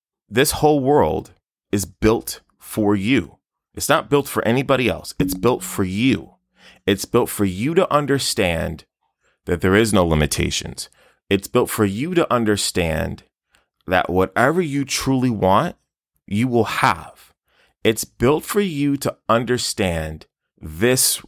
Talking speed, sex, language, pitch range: 140 wpm, male, English, 85-125 Hz